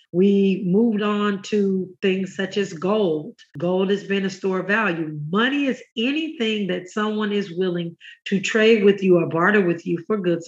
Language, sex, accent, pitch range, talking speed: English, female, American, 180-215 Hz, 185 wpm